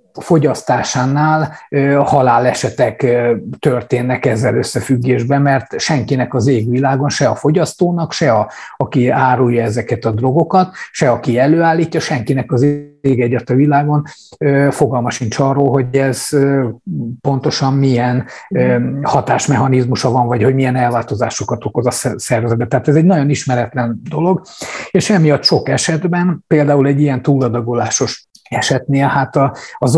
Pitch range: 125-150 Hz